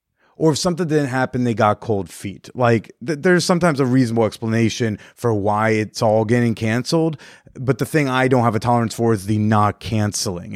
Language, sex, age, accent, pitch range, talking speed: English, male, 30-49, American, 105-130 Hz, 195 wpm